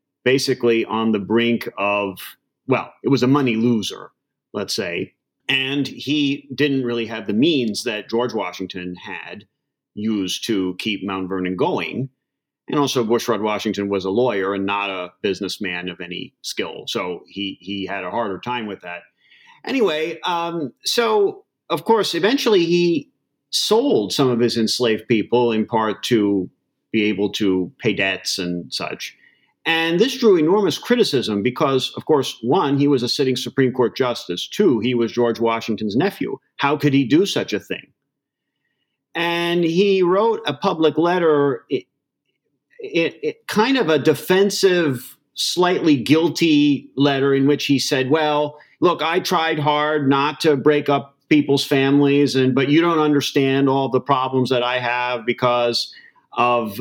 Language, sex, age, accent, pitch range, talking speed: English, male, 40-59, American, 110-150 Hz, 155 wpm